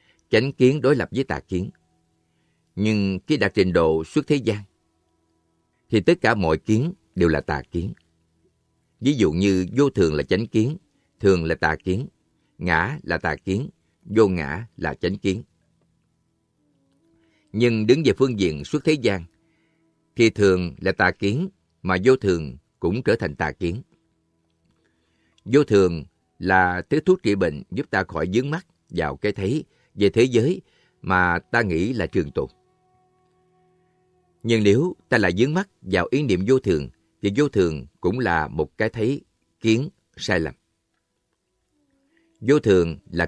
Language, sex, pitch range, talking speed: Vietnamese, male, 85-130 Hz, 160 wpm